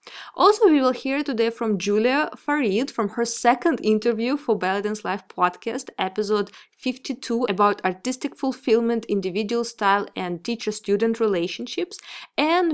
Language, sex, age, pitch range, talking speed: English, female, 20-39, 200-245 Hz, 125 wpm